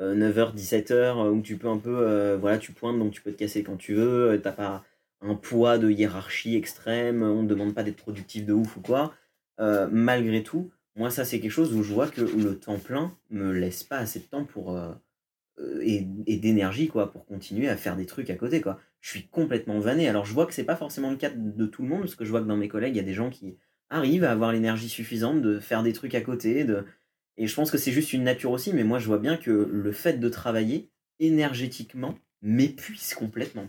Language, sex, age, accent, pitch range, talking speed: French, male, 30-49, French, 105-125 Hz, 245 wpm